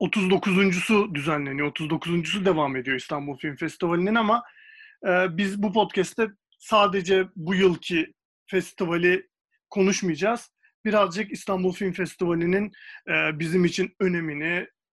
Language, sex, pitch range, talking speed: Turkish, male, 165-210 Hz, 95 wpm